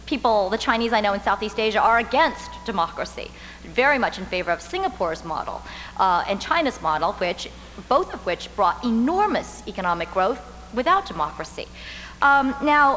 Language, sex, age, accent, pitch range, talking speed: English, female, 40-59, American, 195-275 Hz, 155 wpm